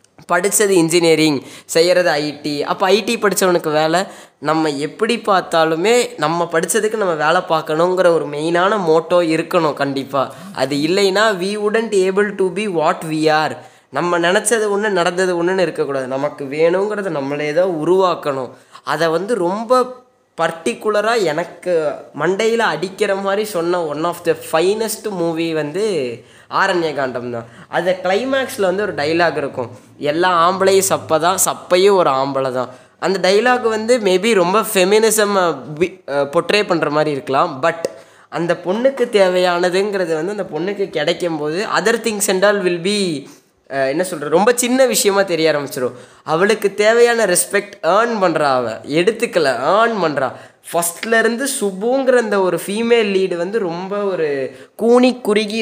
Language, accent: Tamil, native